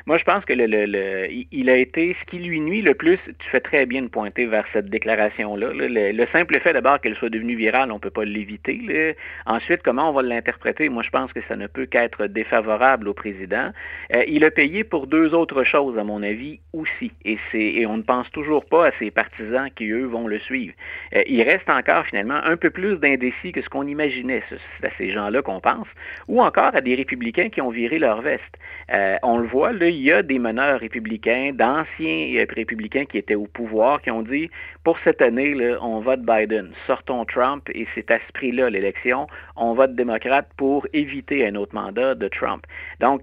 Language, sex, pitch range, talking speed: French, male, 110-140 Hz, 220 wpm